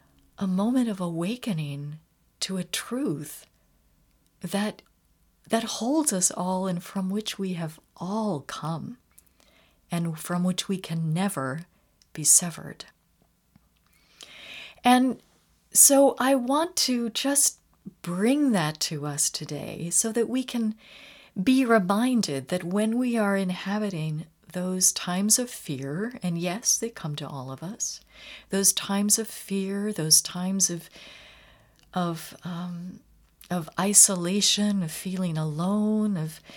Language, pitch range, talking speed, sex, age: English, 165-215 Hz, 125 wpm, female, 40-59